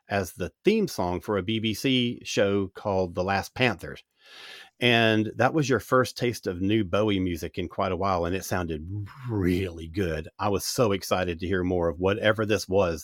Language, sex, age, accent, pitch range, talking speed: English, male, 40-59, American, 95-130 Hz, 195 wpm